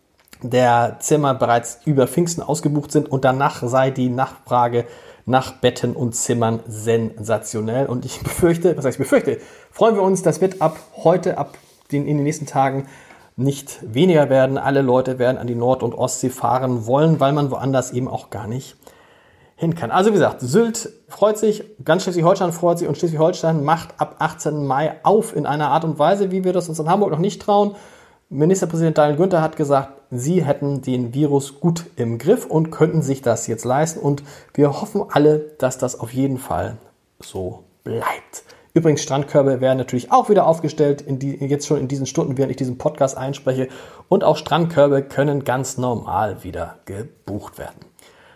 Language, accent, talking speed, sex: German, German, 180 wpm, male